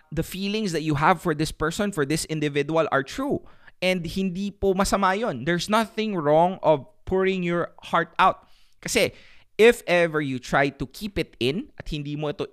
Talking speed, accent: 180 wpm, Filipino